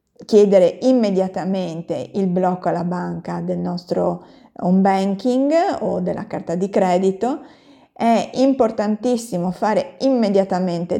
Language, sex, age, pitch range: Italian, female, 30-49, 185-225 Hz